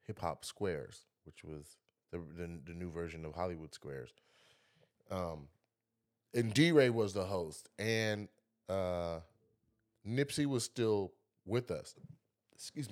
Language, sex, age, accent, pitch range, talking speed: English, male, 30-49, American, 85-105 Hz, 120 wpm